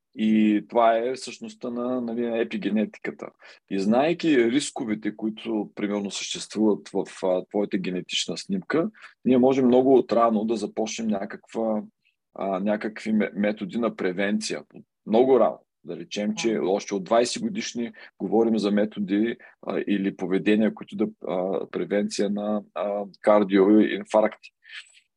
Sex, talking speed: male, 125 wpm